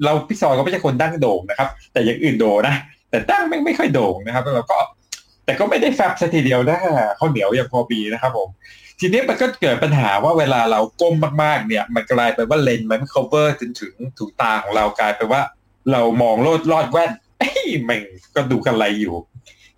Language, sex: Thai, male